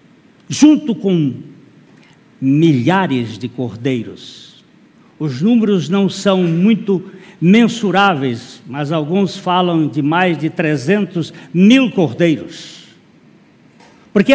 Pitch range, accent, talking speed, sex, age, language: 150-200 Hz, Brazilian, 90 wpm, male, 60-79, Portuguese